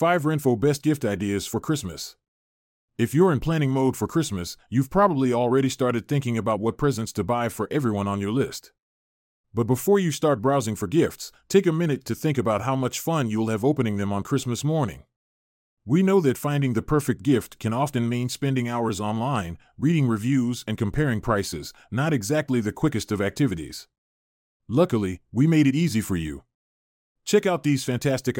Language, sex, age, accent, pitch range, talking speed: English, male, 30-49, American, 105-145 Hz, 185 wpm